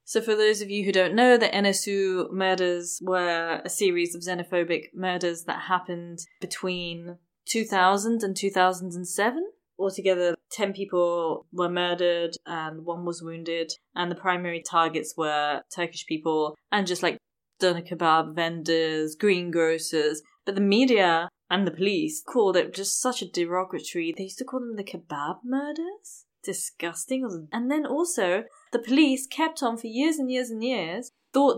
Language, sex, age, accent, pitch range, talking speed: English, female, 20-39, British, 175-230 Hz, 155 wpm